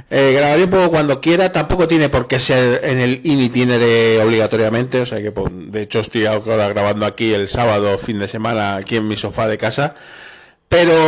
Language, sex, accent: English, male, Spanish